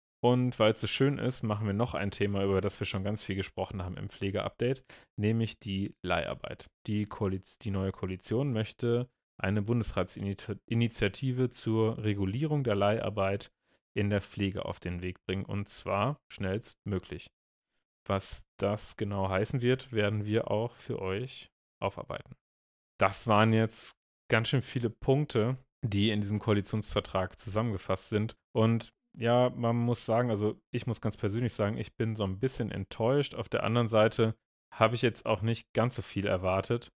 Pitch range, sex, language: 100-115 Hz, male, German